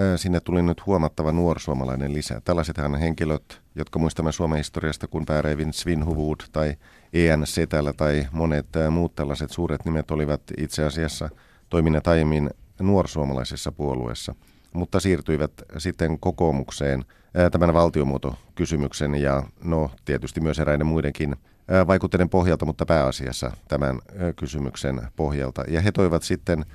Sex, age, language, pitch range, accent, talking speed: male, 50-69, Finnish, 70-85 Hz, native, 125 wpm